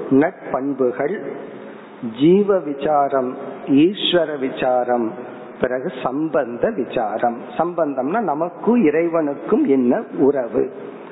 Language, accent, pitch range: Tamil, native, 135-170 Hz